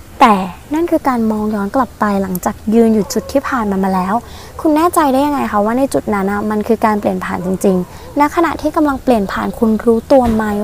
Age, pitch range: 20-39, 210-275 Hz